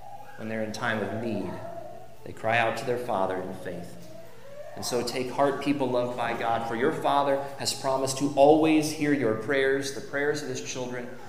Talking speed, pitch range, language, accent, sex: 195 wpm, 120-145 Hz, English, American, male